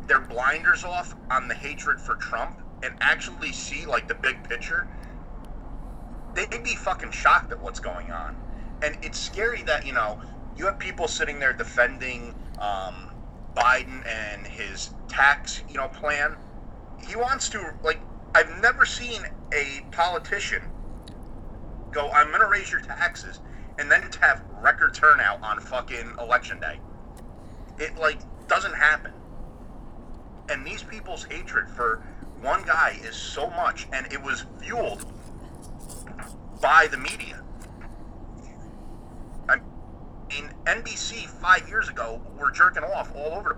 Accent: American